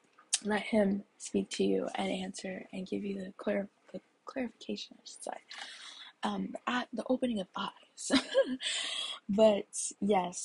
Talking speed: 125 wpm